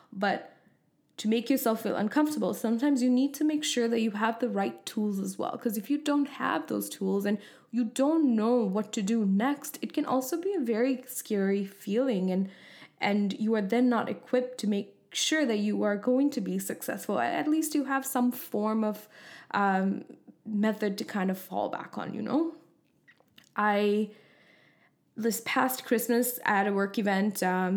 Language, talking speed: English, 190 wpm